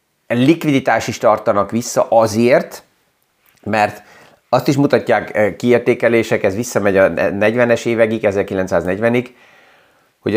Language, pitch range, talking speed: Hungarian, 100-115 Hz, 100 wpm